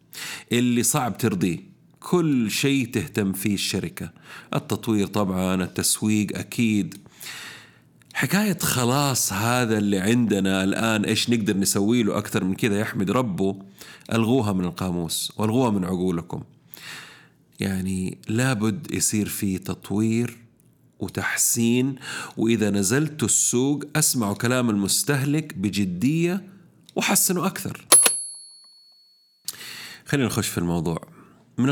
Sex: male